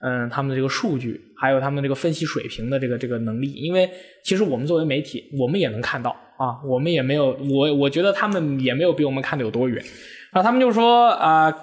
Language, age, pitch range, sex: Chinese, 20-39, 145-225 Hz, male